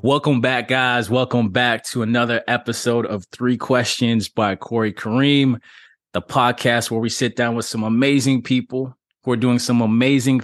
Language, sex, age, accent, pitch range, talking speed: English, male, 20-39, American, 110-130 Hz, 165 wpm